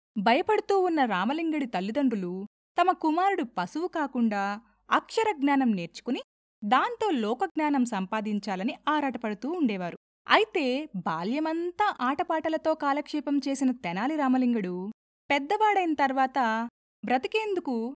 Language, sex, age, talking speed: Telugu, female, 20-39, 75 wpm